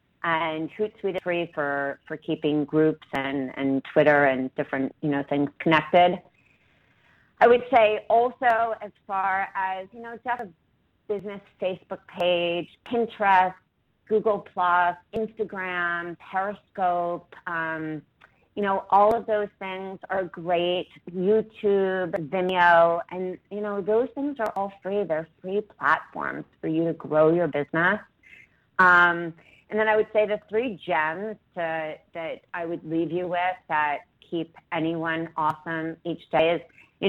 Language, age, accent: English, 30-49, American